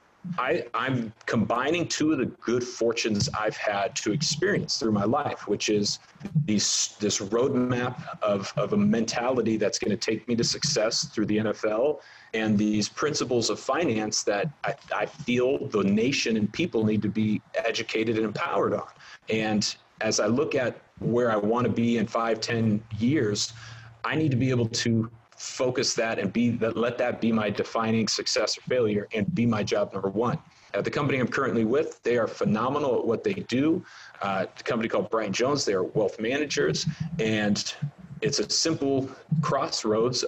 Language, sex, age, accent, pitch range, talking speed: English, male, 40-59, American, 110-140 Hz, 175 wpm